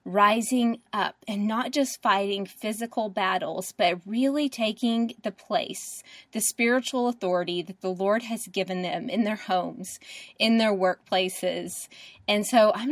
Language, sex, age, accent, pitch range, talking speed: English, female, 20-39, American, 190-235 Hz, 145 wpm